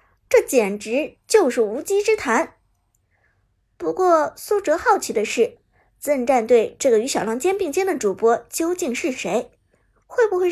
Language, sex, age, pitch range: Chinese, male, 60-79, 230-345 Hz